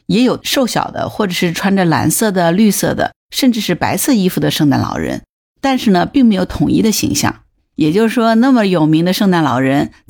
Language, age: Chinese, 50-69